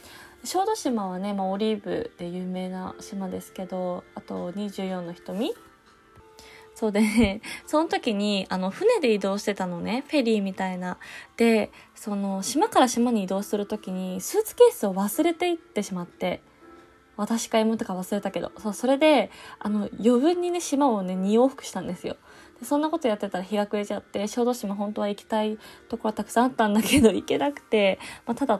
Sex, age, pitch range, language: female, 20-39, 195-240 Hz, Japanese